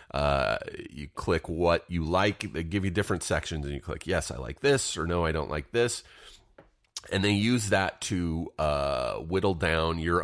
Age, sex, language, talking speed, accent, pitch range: 30-49, male, English, 195 wpm, American, 85-110 Hz